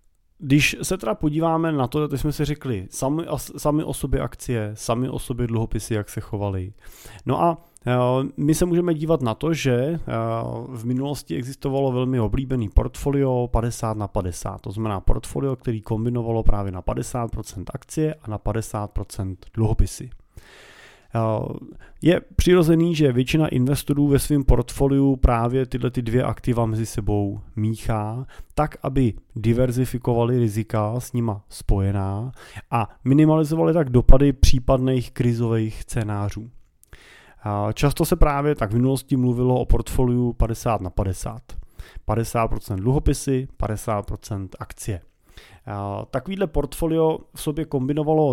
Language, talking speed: Czech, 125 wpm